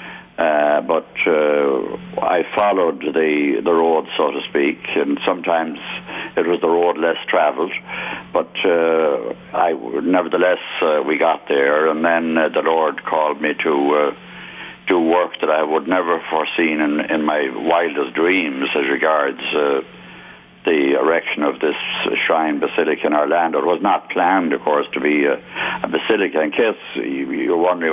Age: 60-79